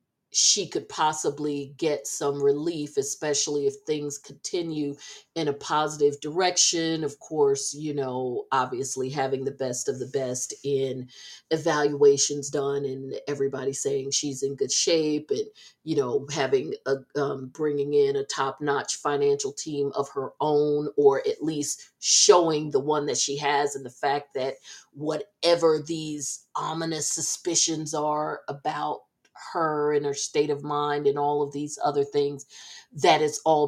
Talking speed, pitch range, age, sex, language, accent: 150 wpm, 145-205 Hz, 40-59, female, English, American